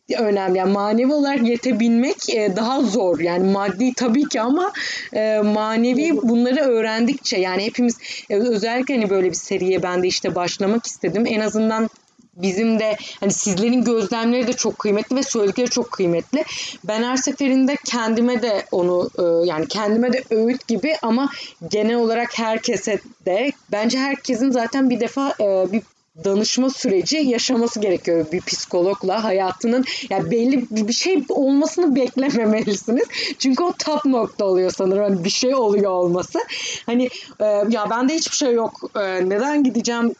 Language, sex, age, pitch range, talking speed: Turkish, female, 30-49, 200-255 Hz, 140 wpm